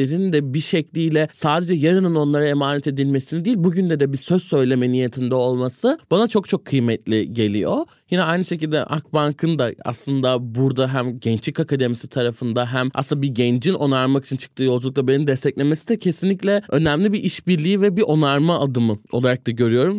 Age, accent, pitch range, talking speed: 20-39, native, 130-170 Hz, 160 wpm